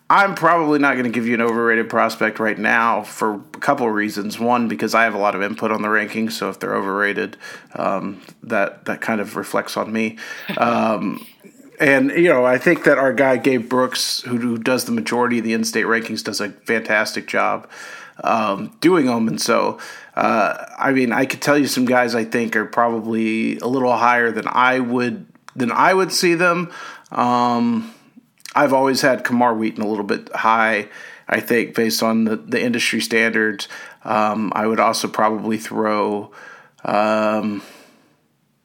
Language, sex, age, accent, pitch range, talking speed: English, male, 40-59, American, 110-135 Hz, 185 wpm